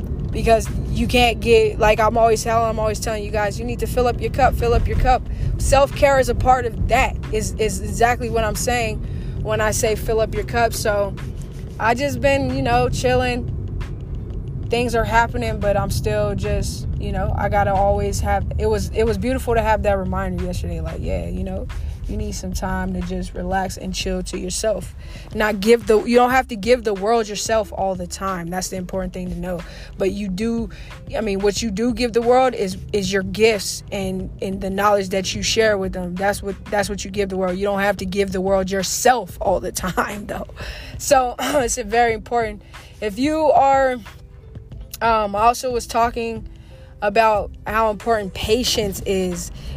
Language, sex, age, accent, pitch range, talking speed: English, female, 20-39, American, 180-230 Hz, 205 wpm